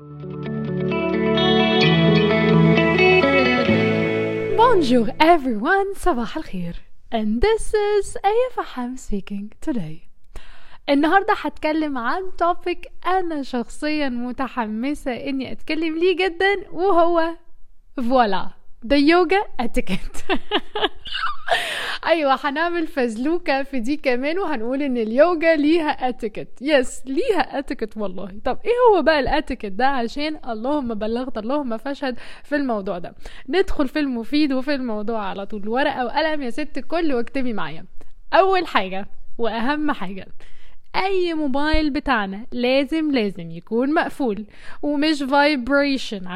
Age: 20-39